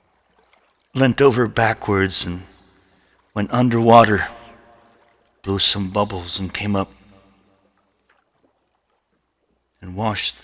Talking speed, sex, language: 80 wpm, male, English